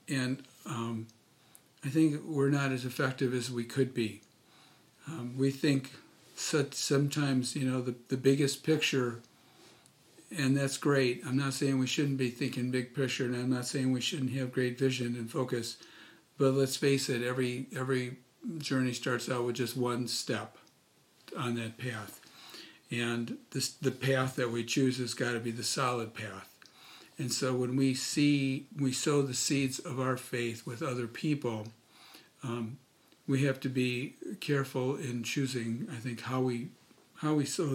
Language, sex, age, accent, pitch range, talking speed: English, male, 50-69, American, 120-140 Hz, 165 wpm